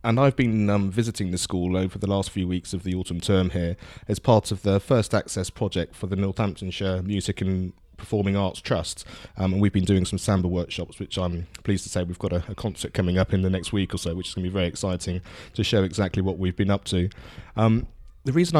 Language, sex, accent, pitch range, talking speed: English, male, British, 95-105 Hz, 245 wpm